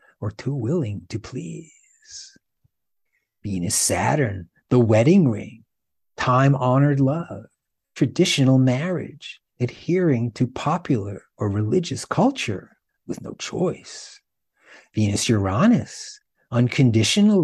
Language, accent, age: English, American, 50-69